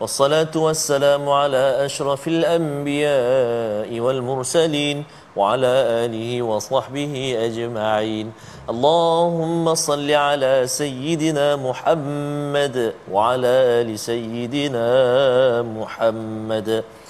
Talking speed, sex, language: 65 wpm, male, Malayalam